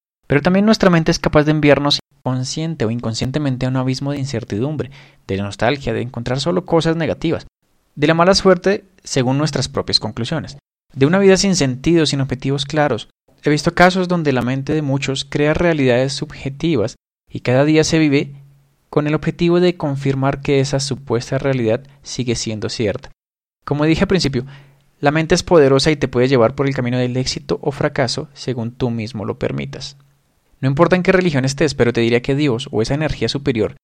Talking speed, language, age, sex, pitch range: 190 wpm, Spanish, 20-39, male, 125-155 Hz